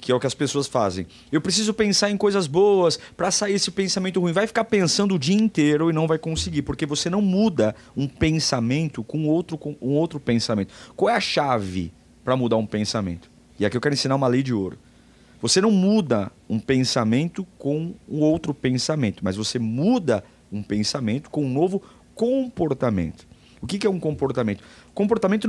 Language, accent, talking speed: Portuguese, Brazilian, 190 wpm